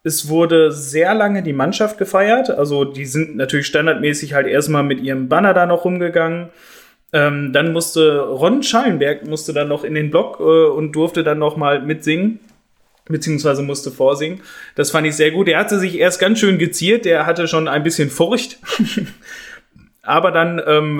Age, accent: 30-49, German